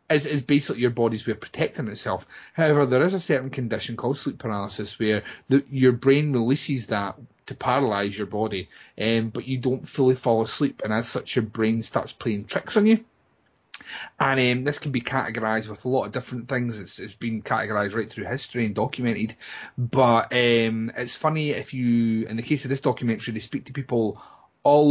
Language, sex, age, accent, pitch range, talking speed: English, male, 30-49, British, 115-140 Hz, 200 wpm